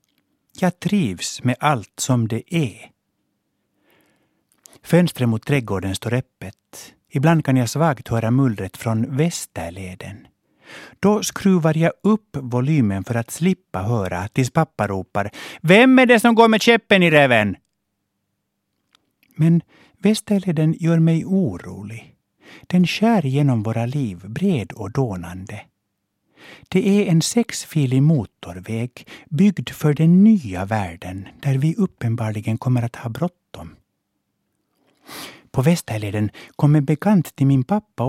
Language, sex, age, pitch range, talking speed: Swedish, male, 60-79, 115-175 Hz, 125 wpm